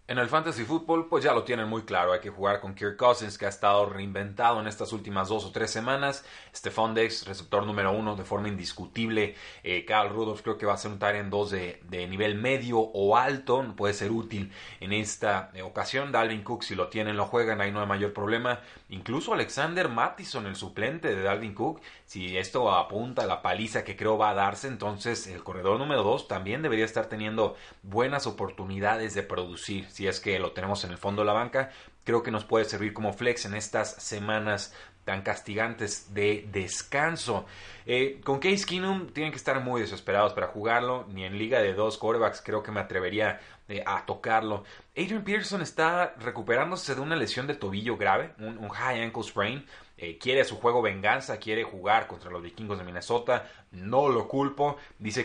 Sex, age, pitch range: male, 30-49, 100-120 Hz